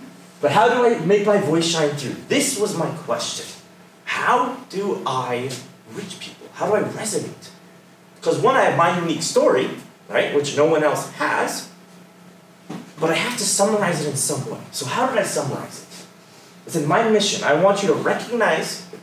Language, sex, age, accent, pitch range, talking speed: English, male, 30-49, American, 150-210 Hz, 190 wpm